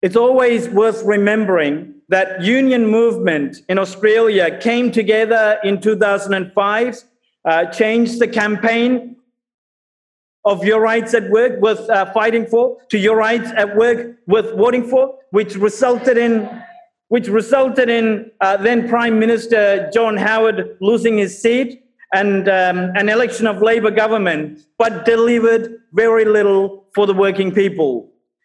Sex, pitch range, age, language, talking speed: male, 210-245 Hz, 50-69, English, 135 wpm